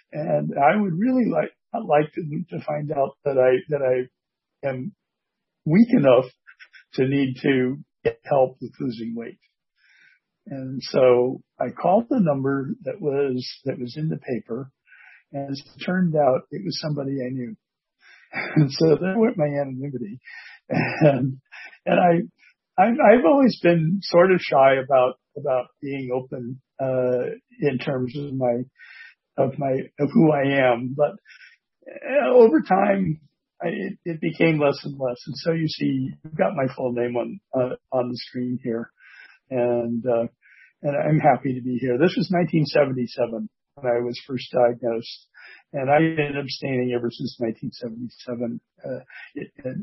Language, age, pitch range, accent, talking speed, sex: English, 60-79, 125-160 Hz, American, 155 wpm, male